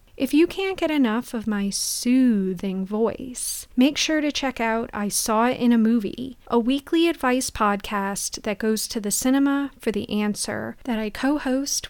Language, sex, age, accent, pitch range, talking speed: English, female, 30-49, American, 215-270 Hz, 175 wpm